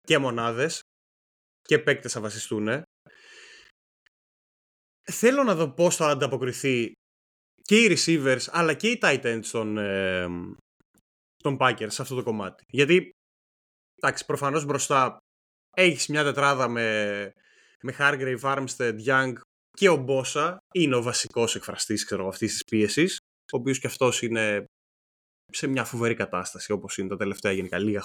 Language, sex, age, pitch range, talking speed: Greek, male, 20-39, 115-165 Hz, 135 wpm